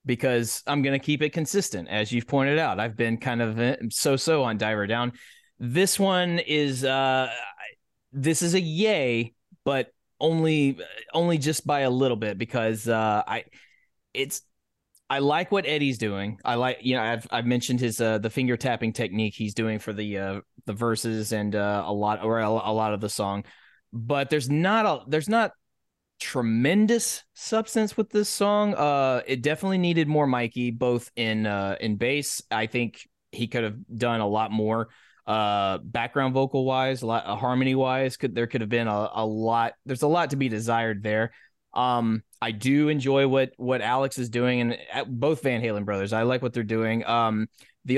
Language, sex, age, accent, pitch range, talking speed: English, male, 20-39, American, 110-145 Hz, 185 wpm